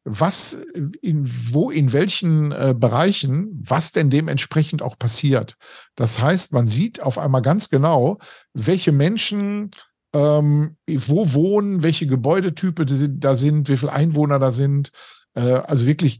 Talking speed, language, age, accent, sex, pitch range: 135 wpm, German, 50-69, German, male, 125-160 Hz